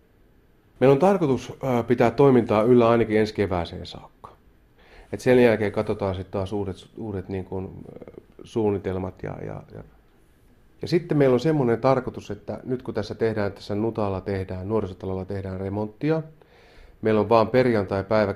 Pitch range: 95-125 Hz